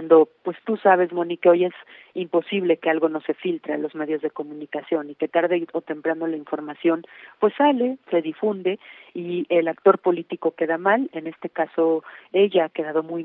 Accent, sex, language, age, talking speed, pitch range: Mexican, female, Spanish, 40-59, 190 wpm, 160-185 Hz